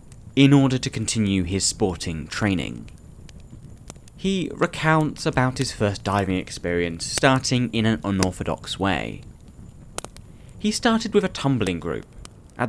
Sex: male